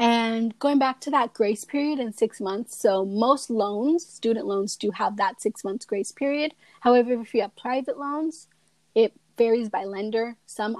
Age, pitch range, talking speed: 20-39, 205-245 Hz, 185 wpm